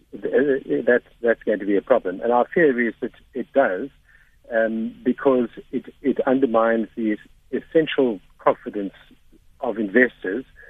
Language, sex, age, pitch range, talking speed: English, male, 60-79, 110-135 Hz, 135 wpm